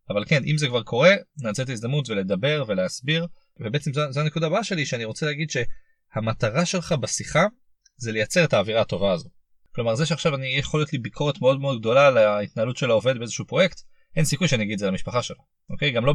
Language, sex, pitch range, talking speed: Hebrew, male, 115-155 Hz, 195 wpm